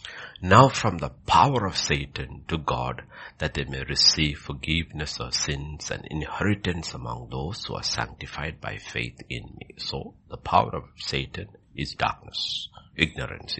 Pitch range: 75-115 Hz